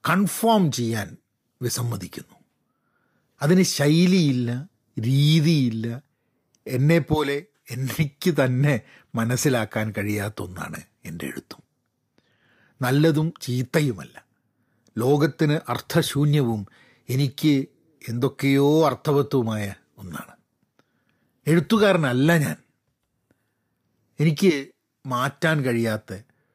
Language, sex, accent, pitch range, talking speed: Malayalam, male, native, 115-150 Hz, 60 wpm